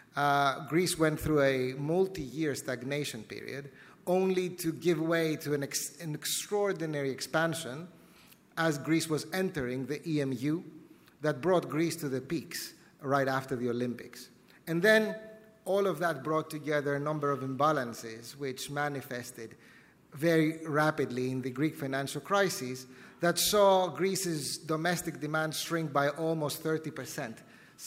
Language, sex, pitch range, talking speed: English, male, 135-170 Hz, 135 wpm